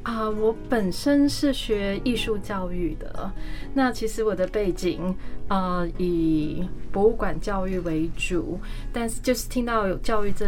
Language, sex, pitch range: Chinese, female, 180-220 Hz